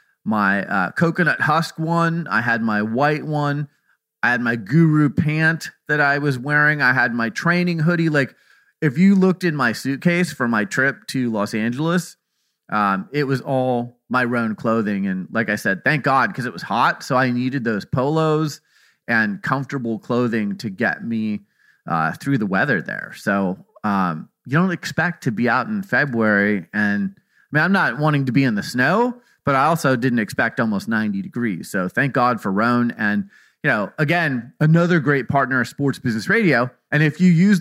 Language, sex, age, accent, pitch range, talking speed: English, male, 30-49, American, 120-170 Hz, 190 wpm